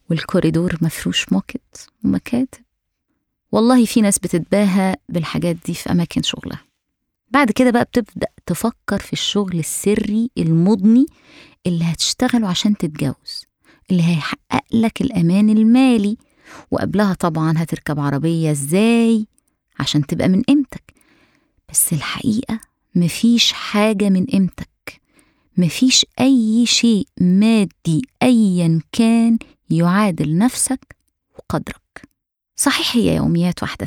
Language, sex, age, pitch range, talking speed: Arabic, female, 20-39, 170-235 Hz, 105 wpm